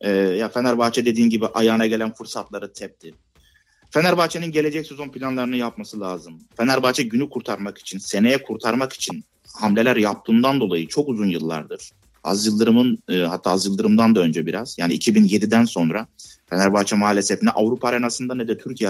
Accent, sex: native, male